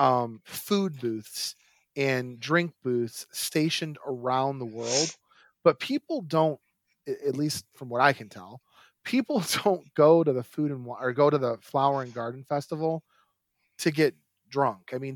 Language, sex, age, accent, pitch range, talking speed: English, male, 30-49, American, 125-165 Hz, 150 wpm